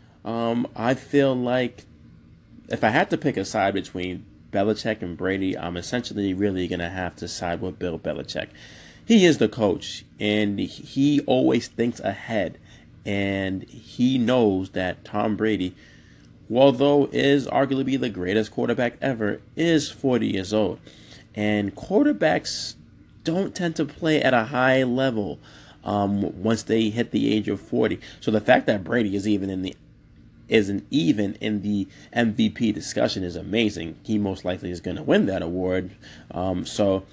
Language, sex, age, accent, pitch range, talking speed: English, male, 30-49, American, 95-120 Hz, 160 wpm